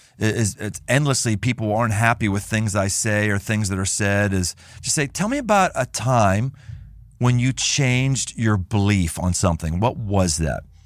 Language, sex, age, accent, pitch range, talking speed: English, male, 40-59, American, 95-135 Hz, 175 wpm